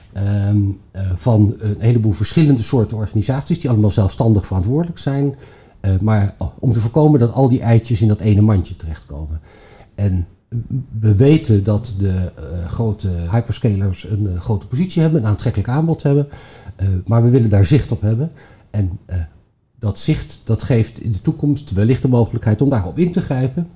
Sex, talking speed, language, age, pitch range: male, 175 wpm, Dutch, 50-69, 100-135 Hz